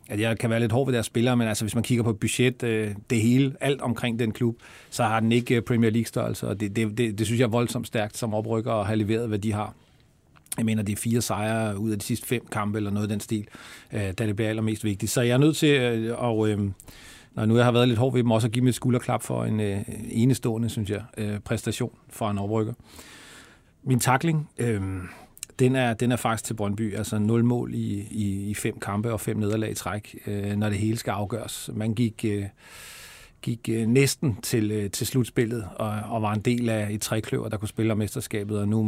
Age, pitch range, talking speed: 40-59, 105-120 Hz, 235 wpm